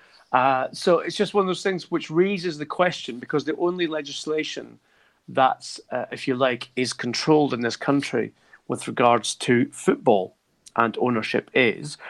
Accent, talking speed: British, 160 wpm